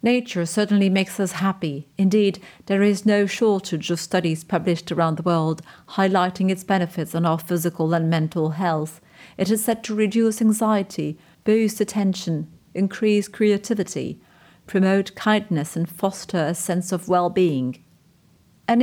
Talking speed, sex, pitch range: 140 wpm, female, 175-215 Hz